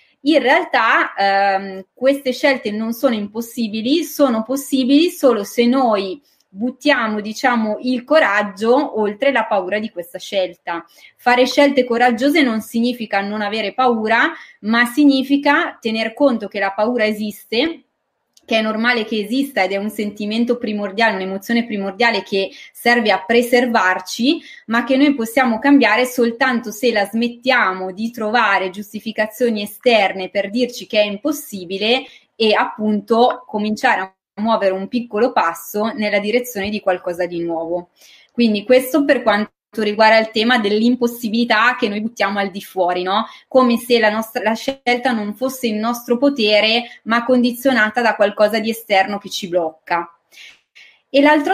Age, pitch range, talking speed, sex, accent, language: 20-39, 205-250 Hz, 145 wpm, female, native, Italian